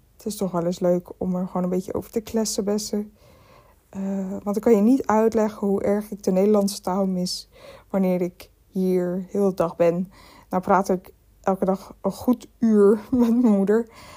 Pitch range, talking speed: 195-225 Hz, 200 wpm